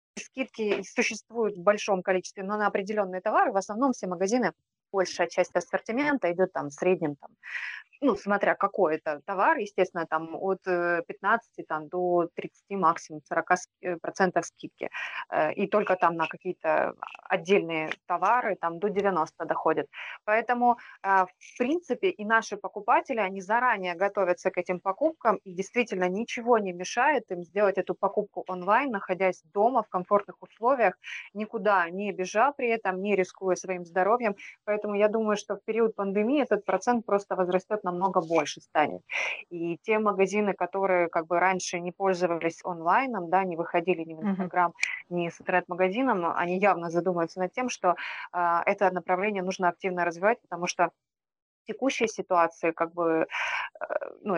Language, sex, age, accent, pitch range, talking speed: Ukrainian, female, 20-39, native, 175-210 Hz, 145 wpm